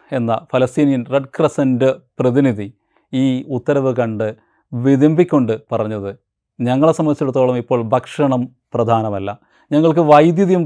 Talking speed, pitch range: 95 wpm, 105-145 Hz